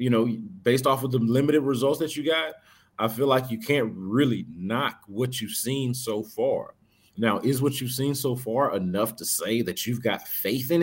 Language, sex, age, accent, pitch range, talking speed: English, male, 40-59, American, 110-140 Hz, 210 wpm